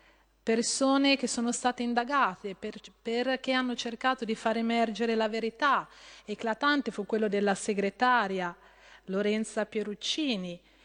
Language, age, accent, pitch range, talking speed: Italian, 30-49, native, 200-240 Hz, 115 wpm